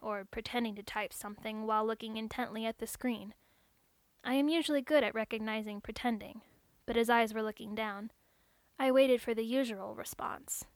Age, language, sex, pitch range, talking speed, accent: 10-29, English, female, 220-250 Hz, 165 wpm, American